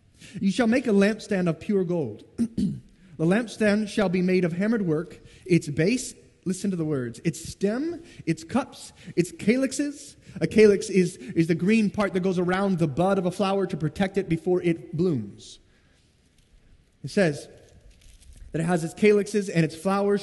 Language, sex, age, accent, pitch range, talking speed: English, male, 30-49, American, 155-200 Hz, 175 wpm